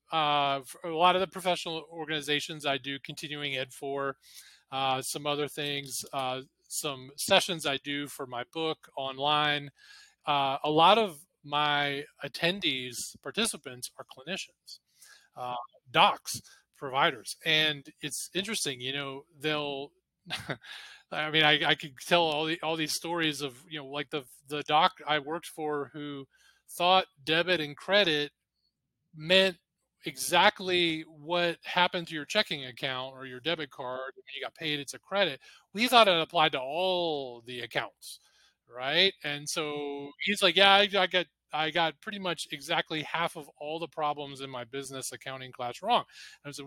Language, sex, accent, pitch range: English, male, American, 140-175 Hz